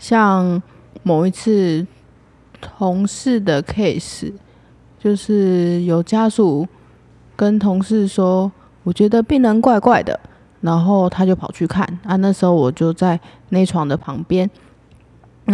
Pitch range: 165-195 Hz